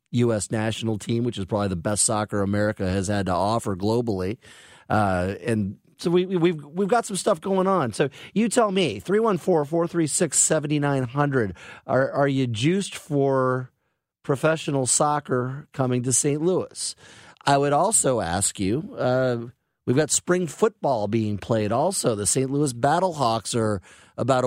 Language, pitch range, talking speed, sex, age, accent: English, 115-145 Hz, 175 wpm, male, 30-49, American